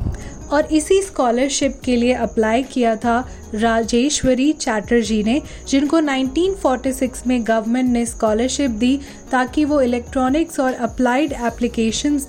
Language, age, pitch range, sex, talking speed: Hindi, 10-29, 235-285 Hz, female, 115 wpm